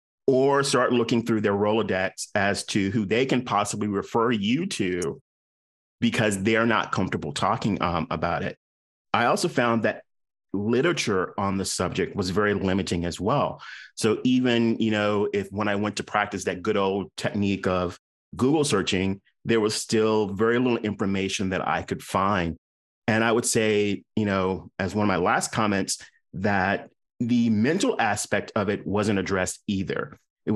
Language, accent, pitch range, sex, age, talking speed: English, American, 95-110 Hz, male, 30-49, 165 wpm